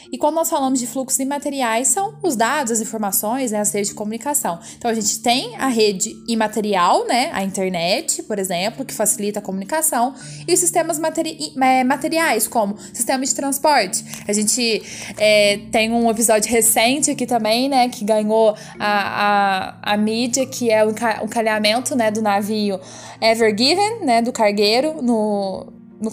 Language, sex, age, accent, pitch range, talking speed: Portuguese, female, 10-29, Brazilian, 205-255 Hz, 170 wpm